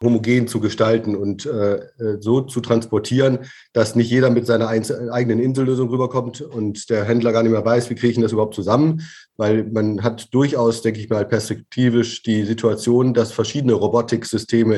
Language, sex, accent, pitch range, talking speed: German, male, German, 110-125 Hz, 170 wpm